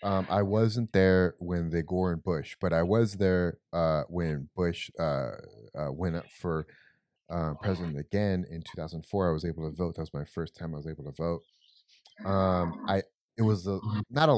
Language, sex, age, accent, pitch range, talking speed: English, male, 30-49, American, 85-105 Hz, 200 wpm